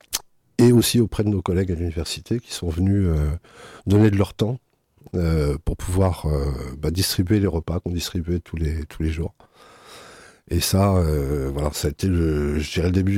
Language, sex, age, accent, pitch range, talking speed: French, male, 50-69, French, 80-100 Hz, 195 wpm